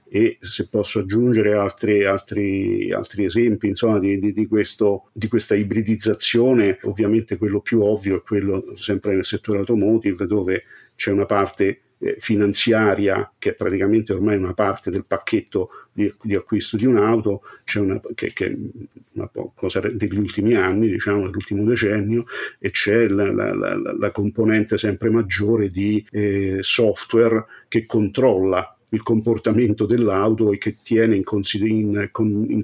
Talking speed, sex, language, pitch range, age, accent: 130 wpm, male, Italian, 105-115 Hz, 50-69, native